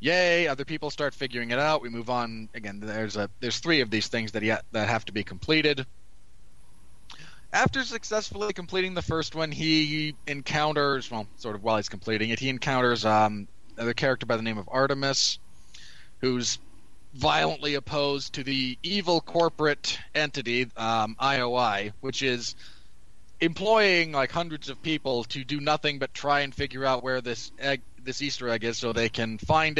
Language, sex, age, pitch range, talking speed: English, male, 20-39, 110-150 Hz, 175 wpm